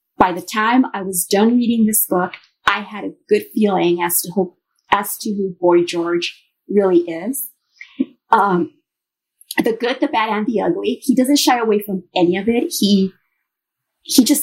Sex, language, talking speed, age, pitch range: female, English, 175 wpm, 30-49, 195-270 Hz